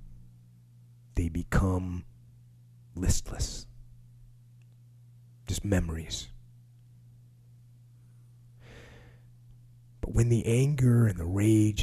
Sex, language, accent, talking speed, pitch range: male, English, American, 60 wpm, 90-120 Hz